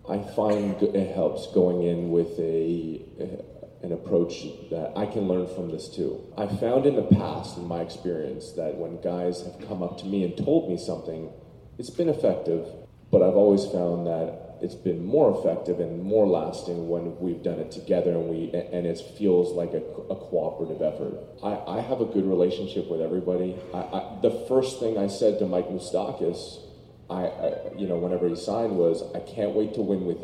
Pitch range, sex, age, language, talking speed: 85-100 Hz, male, 30-49, English, 200 wpm